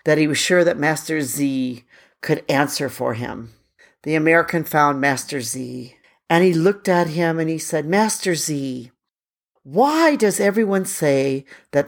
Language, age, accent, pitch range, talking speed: English, 50-69, American, 135-190 Hz, 155 wpm